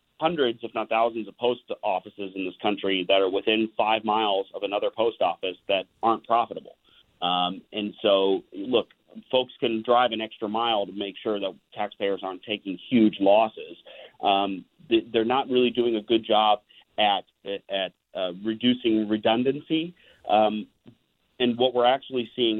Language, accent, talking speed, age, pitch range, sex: English, American, 160 wpm, 40-59, 95-115 Hz, male